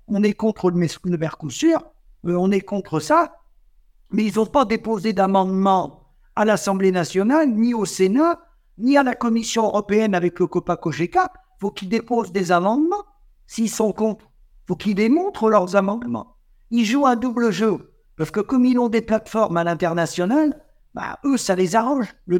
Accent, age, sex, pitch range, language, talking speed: French, 60-79, male, 185-245 Hz, French, 170 wpm